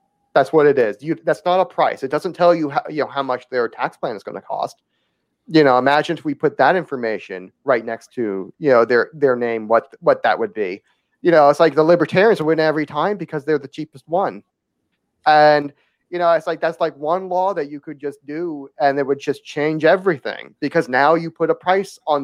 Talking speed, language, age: 235 wpm, English, 30-49